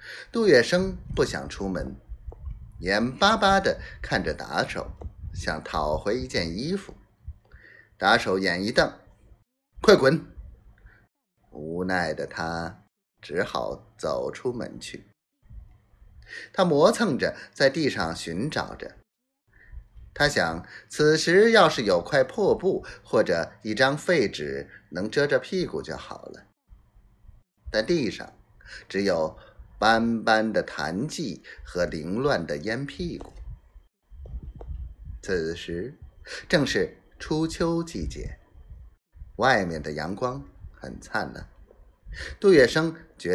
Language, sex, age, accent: Chinese, male, 30-49, native